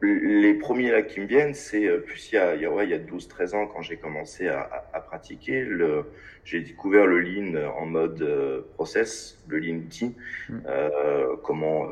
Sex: male